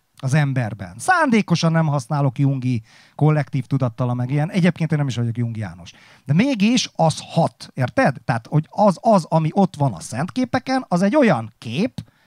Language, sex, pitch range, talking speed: Hungarian, male, 140-185 Hz, 170 wpm